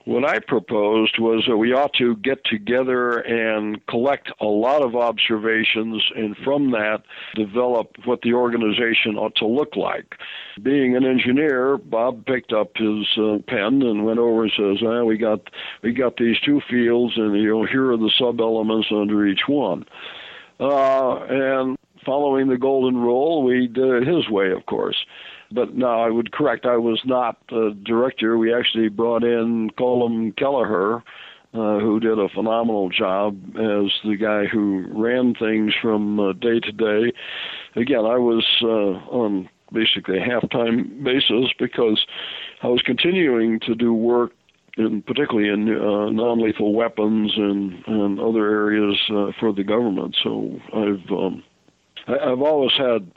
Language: English